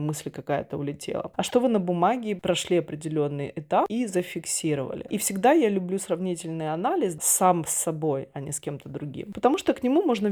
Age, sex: 20-39, female